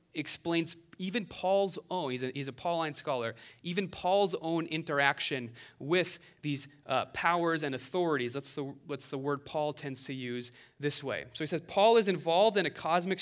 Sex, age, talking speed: male, 30-49, 175 wpm